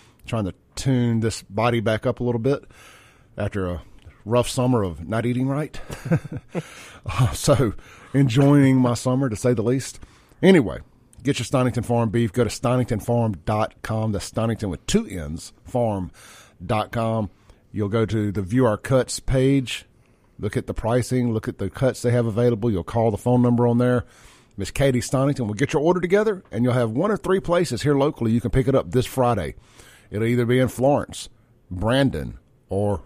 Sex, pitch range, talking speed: male, 110-135 Hz, 180 wpm